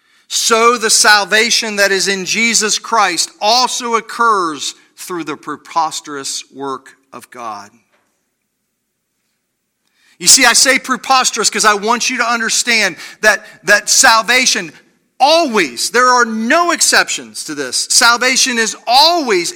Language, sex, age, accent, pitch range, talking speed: English, male, 40-59, American, 165-235 Hz, 125 wpm